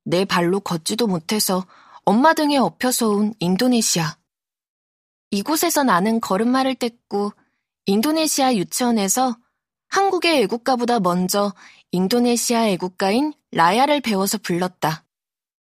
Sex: female